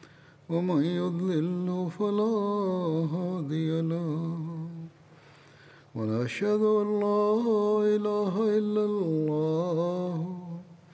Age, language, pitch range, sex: 50-69, Bulgarian, 160-205 Hz, male